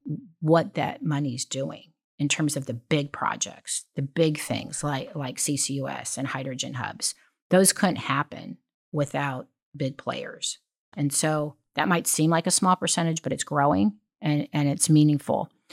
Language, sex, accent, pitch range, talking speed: English, female, American, 145-170 Hz, 155 wpm